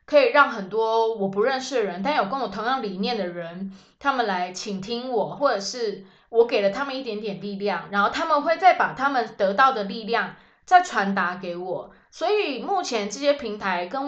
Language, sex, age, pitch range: Chinese, female, 20-39, 195-260 Hz